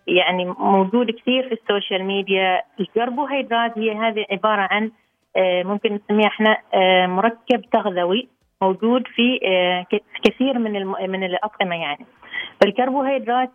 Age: 30-49